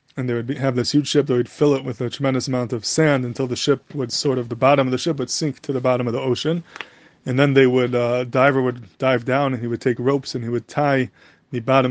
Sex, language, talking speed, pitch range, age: male, English, 285 wpm, 125-145 Hz, 20-39